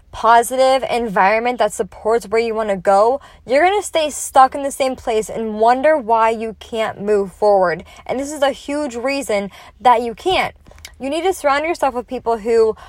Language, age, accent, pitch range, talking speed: English, 20-39, American, 215-280 Hz, 195 wpm